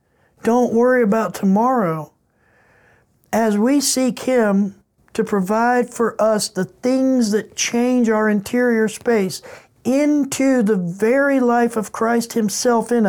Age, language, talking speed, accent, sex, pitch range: 60-79, English, 125 wpm, American, male, 190-235 Hz